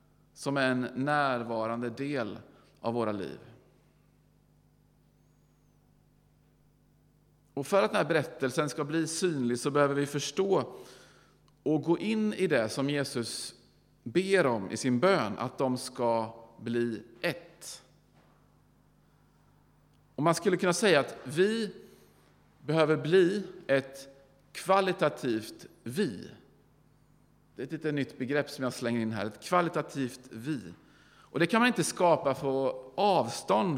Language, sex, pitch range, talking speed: Swedish, male, 120-160 Hz, 125 wpm